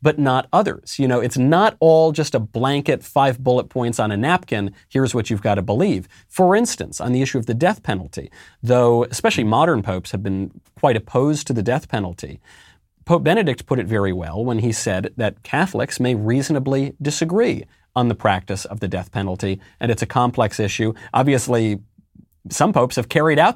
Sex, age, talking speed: male, 40-59, 195 wpm